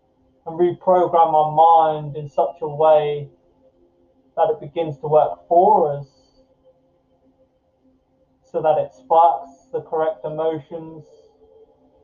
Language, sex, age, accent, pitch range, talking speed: English, male, 20-39, British, 145-170 Hz, 110 wpm